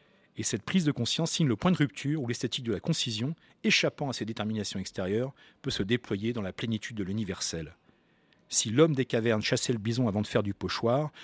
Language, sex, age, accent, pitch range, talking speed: French, male, 40-59, French, 110-150 Hz, 215 wpm